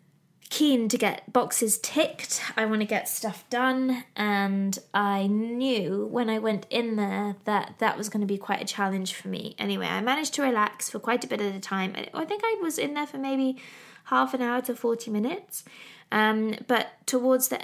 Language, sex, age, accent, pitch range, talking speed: English, female, 20-39, British, 195-250 Hz, 205 wpm